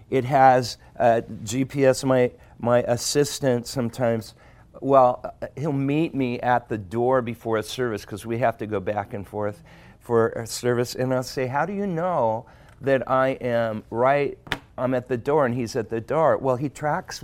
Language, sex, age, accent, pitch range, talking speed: English, male, 50-69, American, 105-130 Hz, 180 wpm